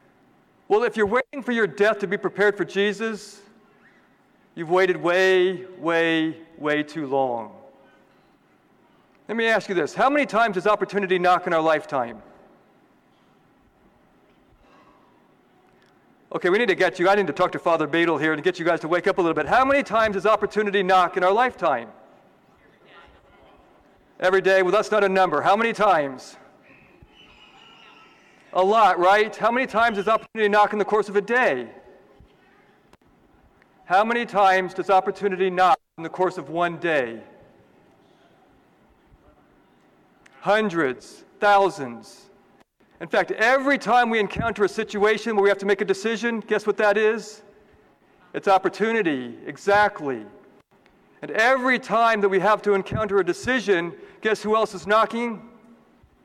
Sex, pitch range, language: male, 185-220 Hz, English